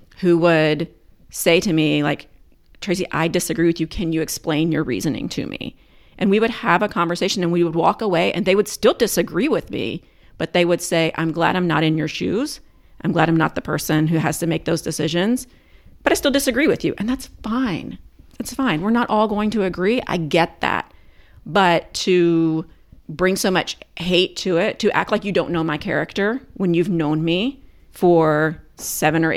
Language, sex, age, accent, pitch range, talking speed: English, female, 40-59, American, 160-185 Hz, 210 wpm